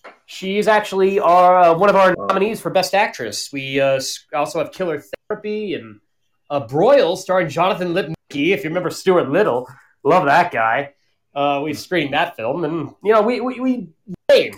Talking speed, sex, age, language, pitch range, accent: 175 wpm, male, 30-49, English, 140-210 Hz, American